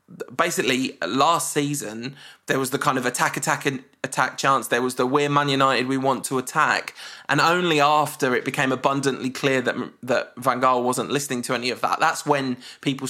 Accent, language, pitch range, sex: British, English, 130-155 Hz, male